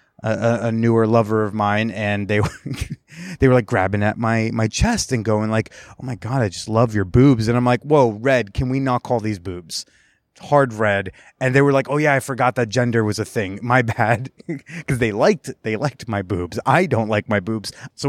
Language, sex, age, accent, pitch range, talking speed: English, male, 30-49, American, 110-135 Hz, 230 wpm